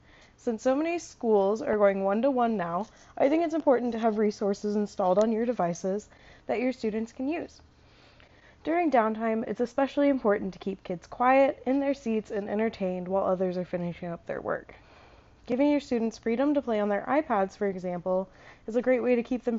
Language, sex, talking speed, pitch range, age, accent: English, female, 195 wpm, 195-250 Hz, 20-39, American